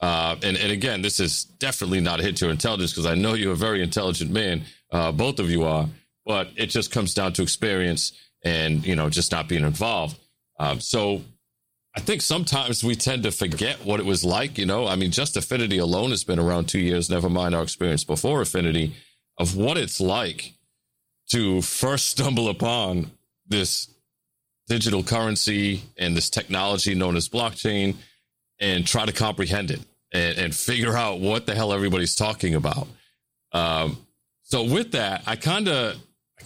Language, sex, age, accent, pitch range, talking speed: English, male, 40-59, American, 90-130 Hz, 180 wpm